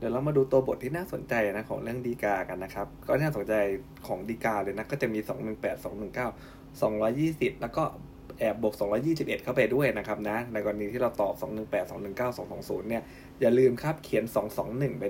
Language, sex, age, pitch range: Thai, male, 20-39, 105-135 Hz